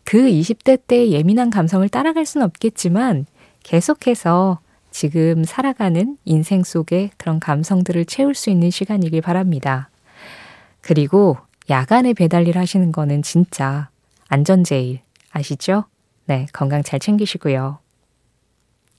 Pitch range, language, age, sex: 150-215 Hz, Korean, 20-39, female